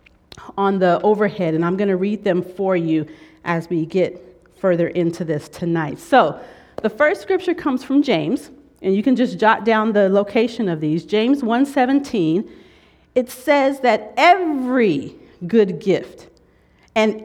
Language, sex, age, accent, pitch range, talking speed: English, female, 40-59, American, 170-235 Hz, 155 wpm